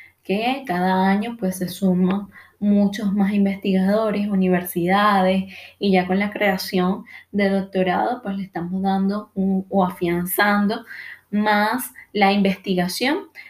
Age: 10-29